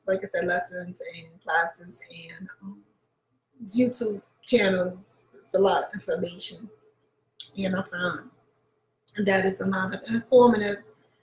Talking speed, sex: 130 wpm, female